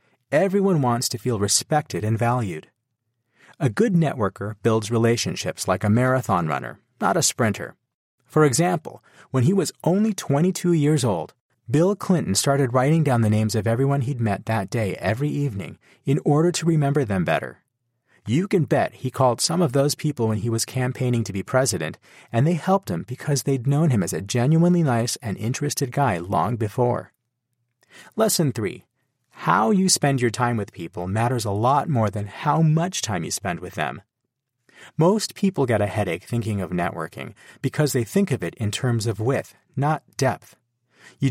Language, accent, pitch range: English, American, 115-150 Hz